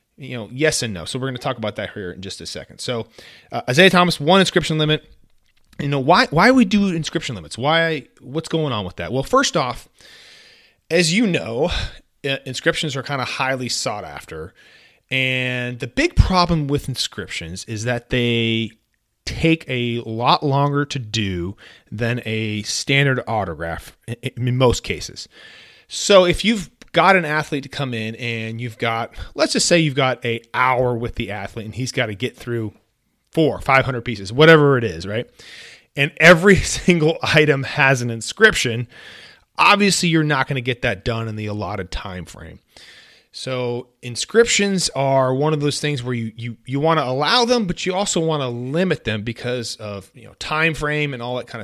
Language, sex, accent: English, male, American